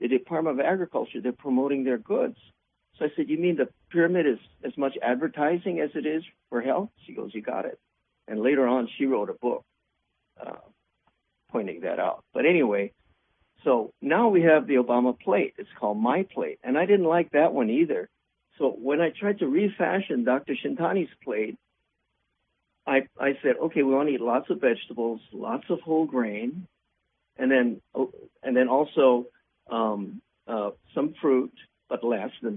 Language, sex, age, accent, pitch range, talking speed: English, male, 60-79, American, 125-190 Hz, 180 wpm